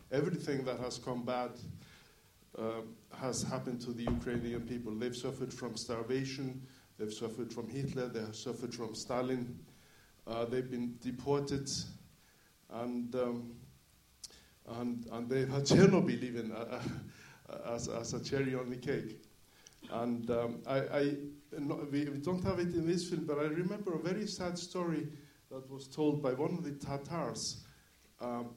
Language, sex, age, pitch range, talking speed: English, male, 60-79, 120-145 Hz, 140 wpm